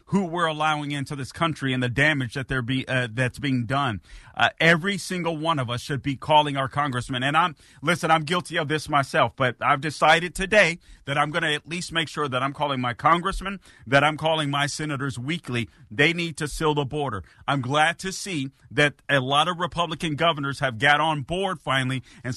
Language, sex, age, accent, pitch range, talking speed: English, male, 40-59, American, 130-165 Hz, 215 wpm